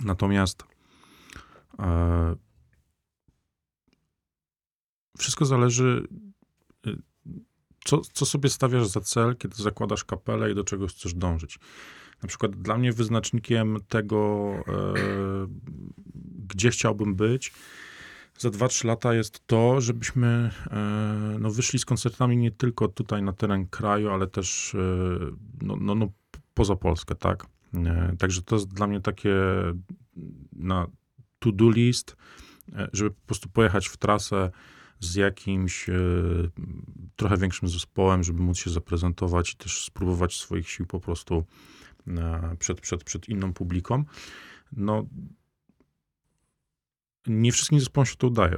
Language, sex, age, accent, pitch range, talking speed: Polish, male, 40-59, native, 90-115 Hz, 120 wpm